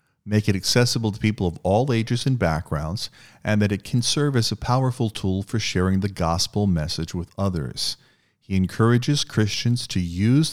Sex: male